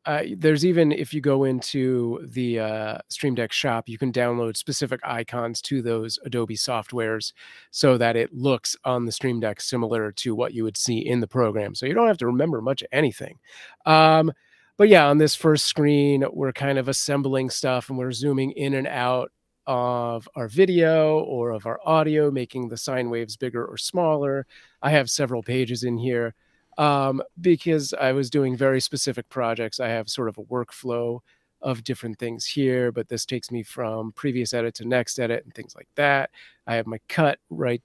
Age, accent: 30-49, American